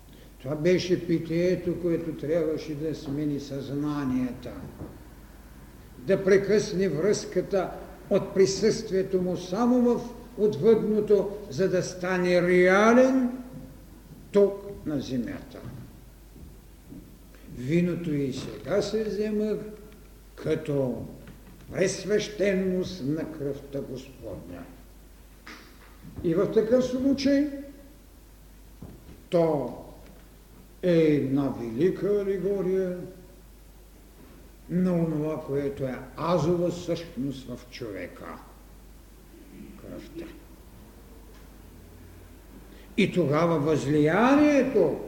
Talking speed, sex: 70 wpm, male